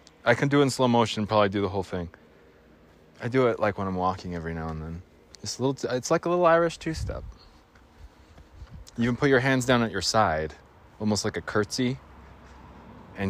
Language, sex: English, male